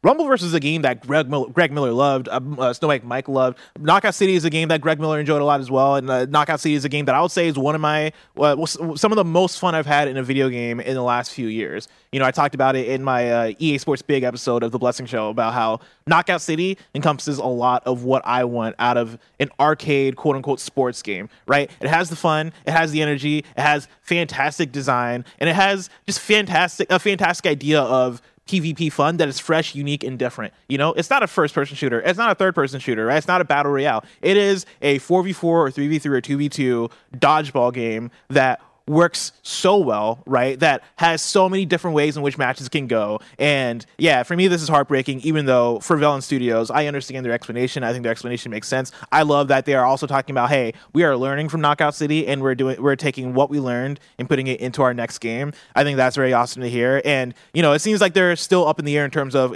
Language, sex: English, male